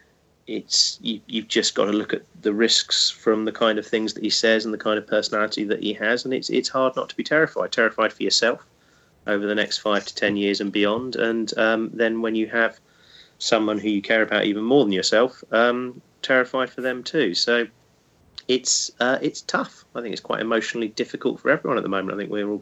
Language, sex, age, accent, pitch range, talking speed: English, male, 30-49, British, 100-115 Hz, 230 wpm